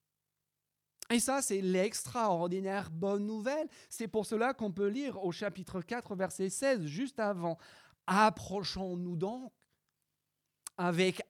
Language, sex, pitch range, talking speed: French, male, 130-210 Hz, 115 wpm